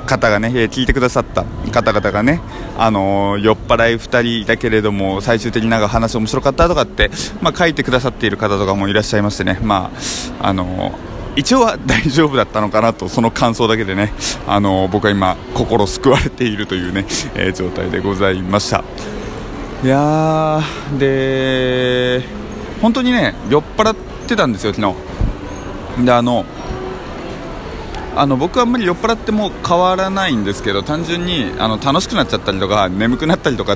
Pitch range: 100-135 Hz